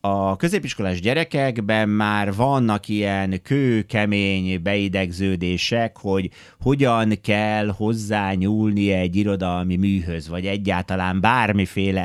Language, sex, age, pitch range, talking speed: Hungarian, male, 30-49, 95-125 Hz, 95 wpm